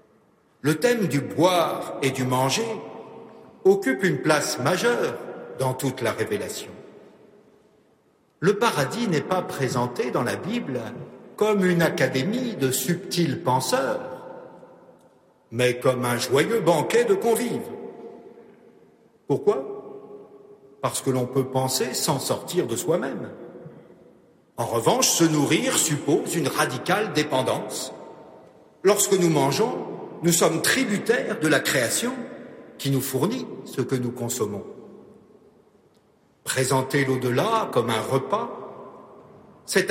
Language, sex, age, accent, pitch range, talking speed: French, male, 60-79, French, 135-215 Hz, 115 wpm